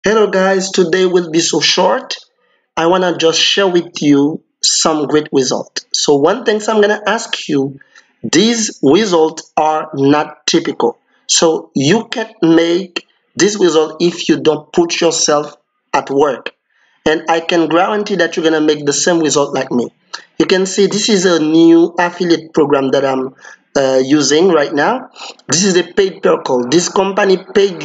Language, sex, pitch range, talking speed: English, male, 155-190 Hz, 170 wpm